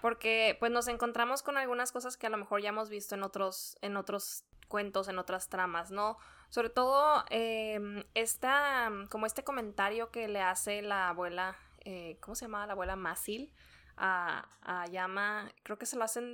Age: 20-39